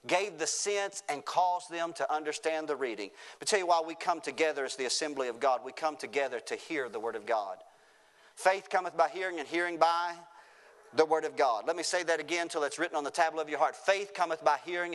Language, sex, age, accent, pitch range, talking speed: English, male, 40-59, American, 160-205 Hz, 245 wpm